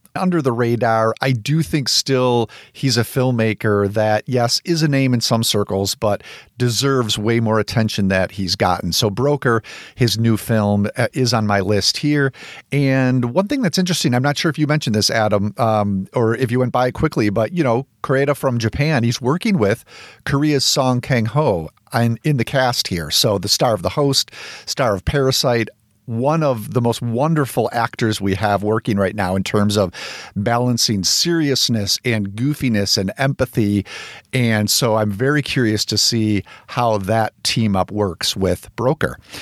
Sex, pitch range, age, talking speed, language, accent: male, 110-140 Hz, 50-69, 175 wpm, English, American